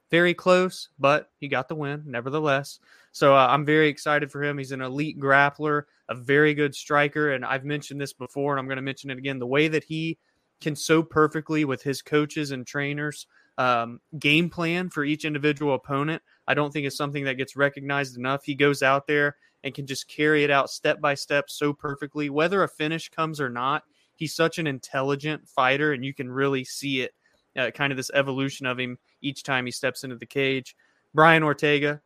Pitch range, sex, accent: 135-150 Hz, male, American